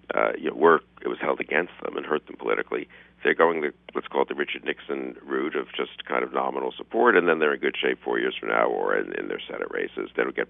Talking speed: 275 wpm